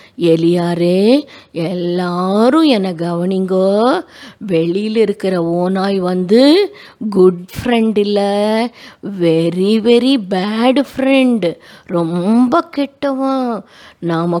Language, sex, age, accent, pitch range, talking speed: Tamil, female, 20-39, native, 180-245 Hz, 75 wpm